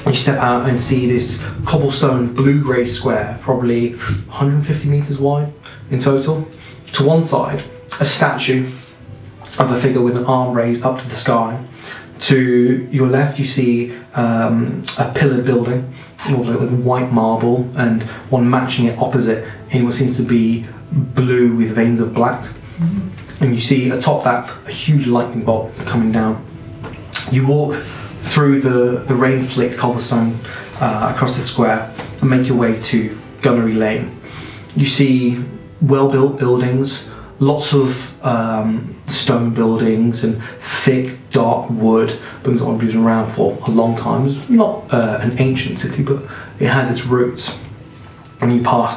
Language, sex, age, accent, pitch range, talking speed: English, male, 20-39, British, 115-135 Hz, 155 wpm